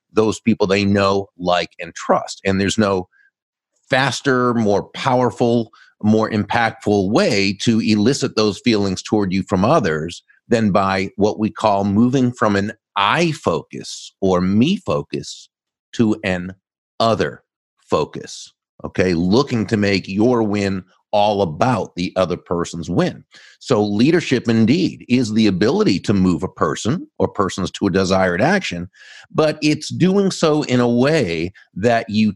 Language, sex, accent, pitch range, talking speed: English, male, American, 100-120 Hz, 145 wpm